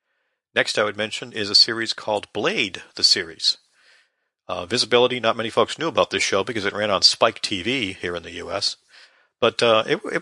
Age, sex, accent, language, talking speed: 50-69, male, American, English, 200 wpm